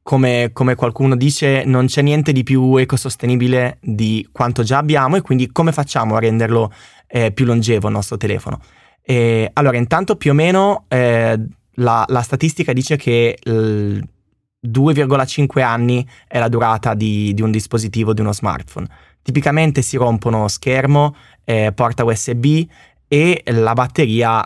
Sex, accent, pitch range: male, native, 110-140 Hz